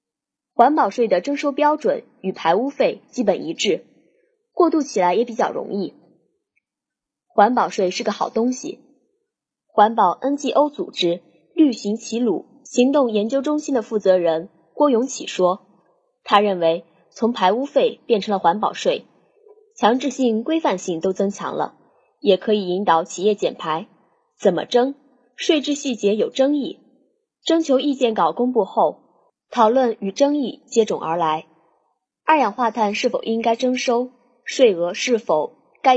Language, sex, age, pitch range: Chinese, female, 20-39, 200-285 Hz